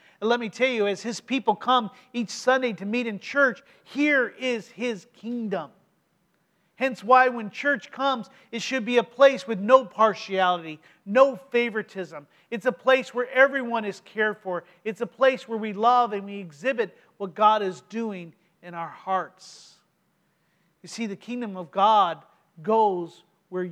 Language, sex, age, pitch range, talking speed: English, male, 40-59, 175-225 Hz, 165 wpm